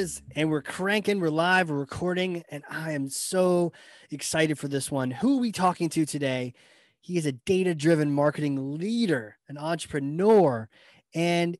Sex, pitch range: male, 140-180 Hz